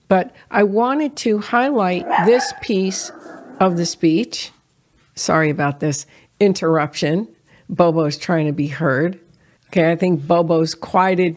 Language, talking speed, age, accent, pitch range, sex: English, 125 wpm, 50-69, American, 160-200 Hz, female